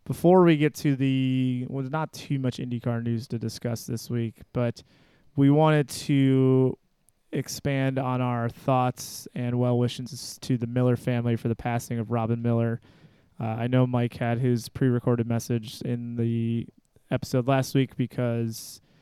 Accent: American